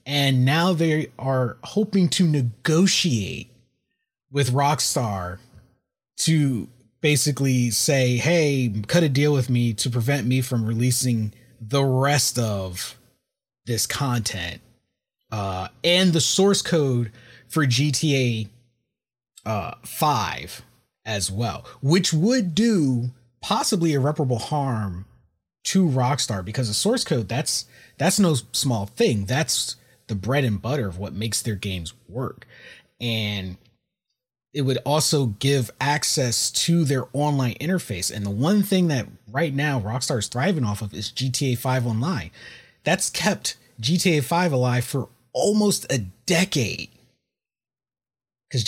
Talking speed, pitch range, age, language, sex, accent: 125 wpm, 120-155 Hz, 30-49, English, male, American